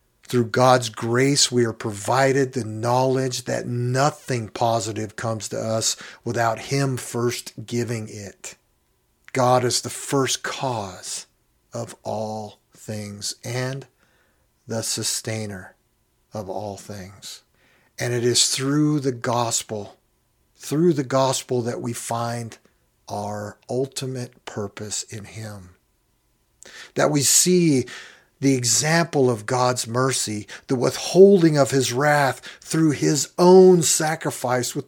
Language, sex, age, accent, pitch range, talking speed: English, male, 50-69, American, 110-135 Hz, 115 wpm